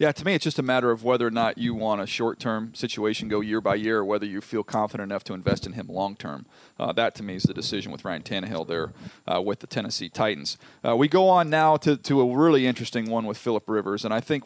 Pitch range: 105-130 Hz